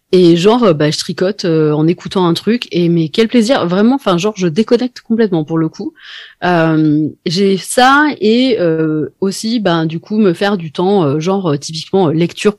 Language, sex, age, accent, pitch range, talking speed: French, female, 30-49, French, 160-205 Hz, 195 wpm